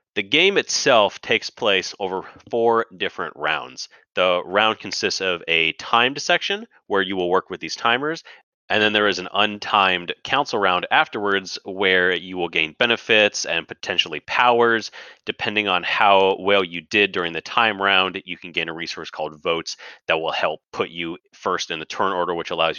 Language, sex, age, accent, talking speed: English, male, 30-49, American, 180 wpm